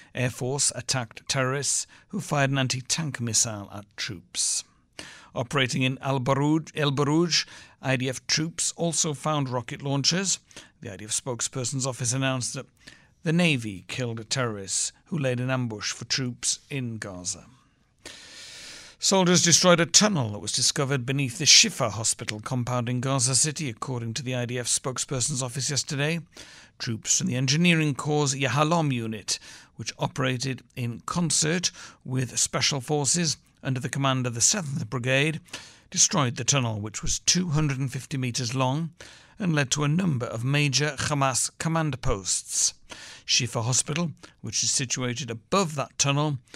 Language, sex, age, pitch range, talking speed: English, male, 60-79, 120-150 Hz, 140 wpm